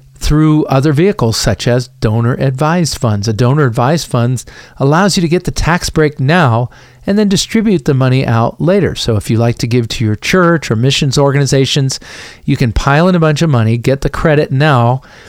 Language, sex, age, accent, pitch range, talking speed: English, male, 50-69, American, 120-155 Hz, 200 wpm